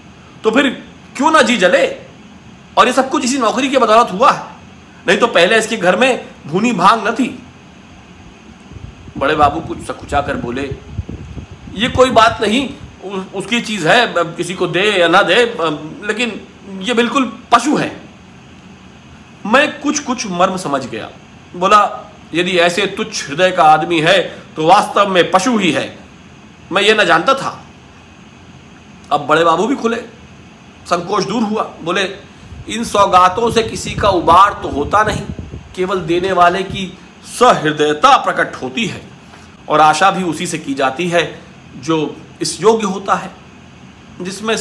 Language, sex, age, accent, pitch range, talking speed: English, male, 50-69, Indian, 175-235 Hz, 150 wpm